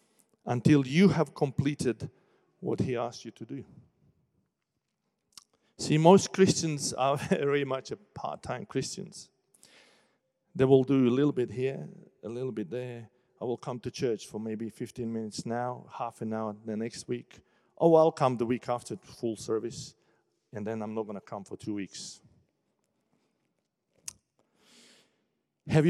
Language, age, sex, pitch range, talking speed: English, 40-59, male, 110-145 Hz, 150 wpm